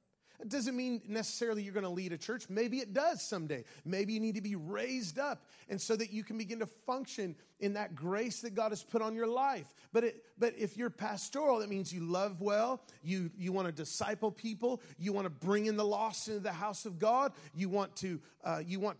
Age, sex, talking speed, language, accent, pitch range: 30-49, male, 230 wpm, English, American, 185-230 Hz